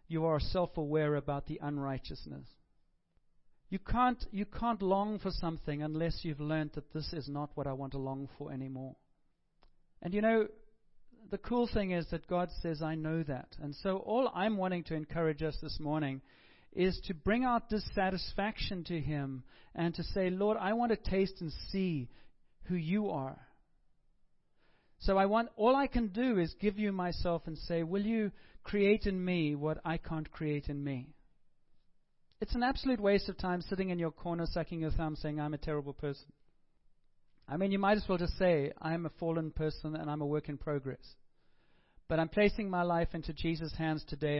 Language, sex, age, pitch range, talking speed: English, male, 40-59, 150-195 Hz, 190 wpm